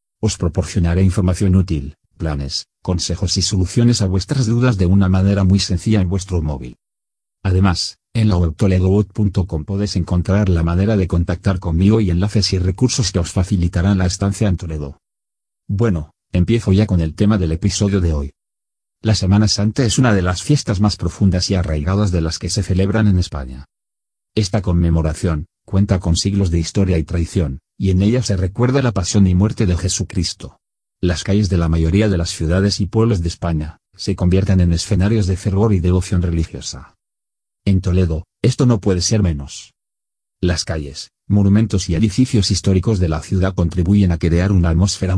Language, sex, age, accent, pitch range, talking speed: Spanish, male, 40-59, Spanish, 85-105 Hz, 175 wpm